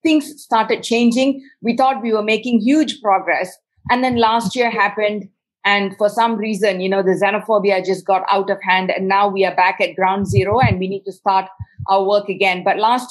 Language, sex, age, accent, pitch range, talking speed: English, female, 50-69, Indian, 195-245 Hz, 210 wpm